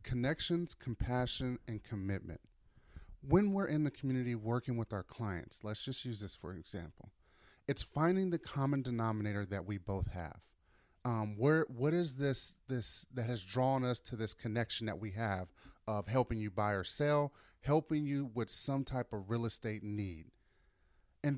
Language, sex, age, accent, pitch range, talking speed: English, male, 30-49, American, 110-145 Hz, 170 wpm